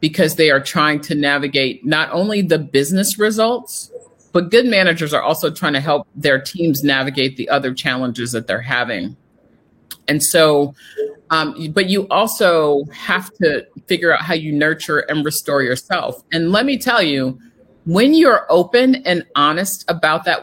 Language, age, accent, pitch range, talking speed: English, 50-69, American, 155-200 Hz, 165 wpm